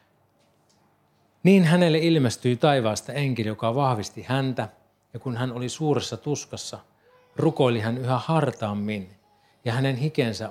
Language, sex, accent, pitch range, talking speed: Finnish, male, native, 110-135 Hz, 120 wpm